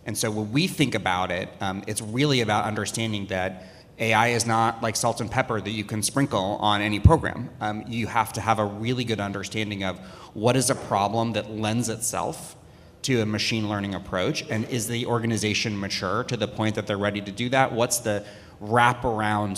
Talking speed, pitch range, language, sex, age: 200 wpm, 100-120 Hz, English, male, 30-49